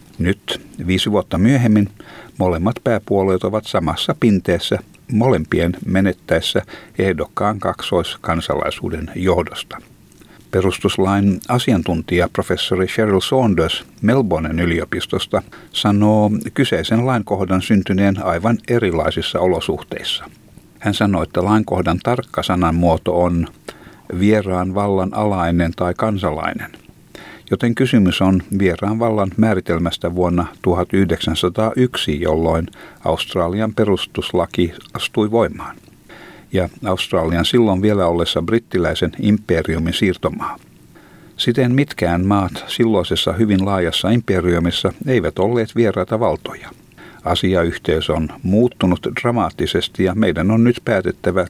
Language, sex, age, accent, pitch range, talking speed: Finnish, male, 60-79, native, 90-110 Hz, 95 wpm